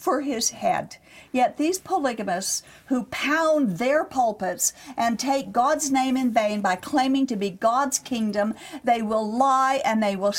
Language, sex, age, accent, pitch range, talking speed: English, female, 50-69, American, 205-275 Hz, 160 wpm